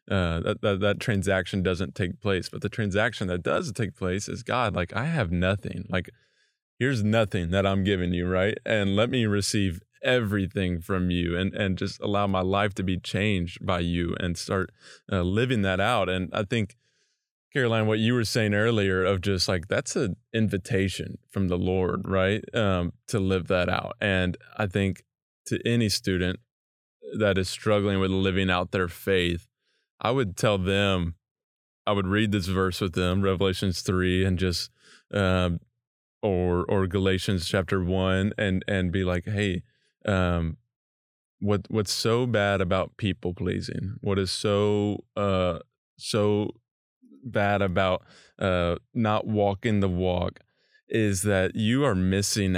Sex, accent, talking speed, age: male, American, 165 wpm, 20-39